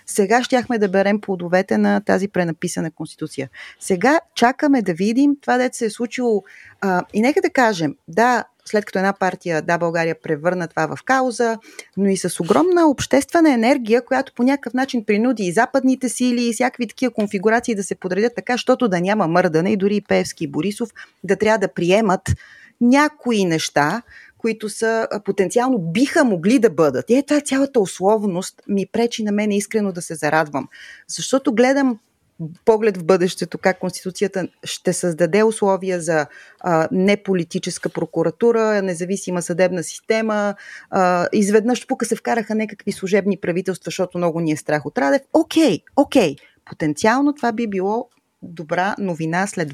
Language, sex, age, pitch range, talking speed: Bulgarian, female, 30-49, 180-240 Hz, 160 wpm